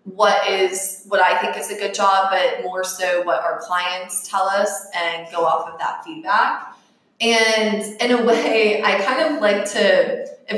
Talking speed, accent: 185 wpm, American